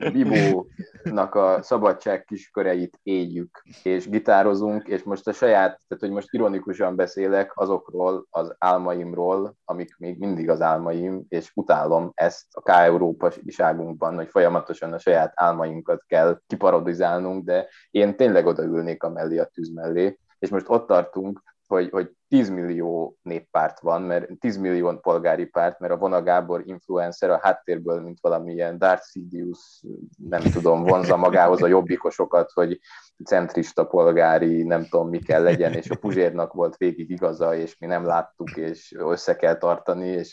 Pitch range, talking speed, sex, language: 85-95 Hz, 150 wpm, male, Hungarian